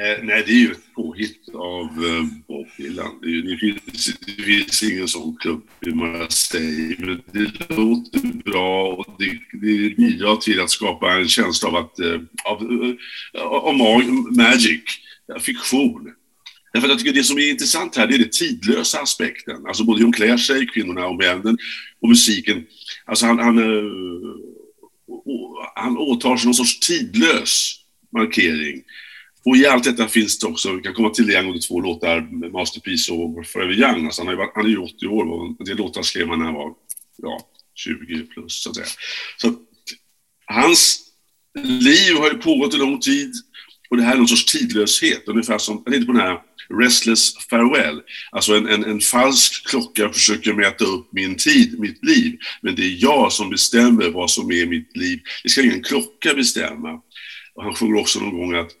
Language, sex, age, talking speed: Swedish, male, 50-69, 180 wpm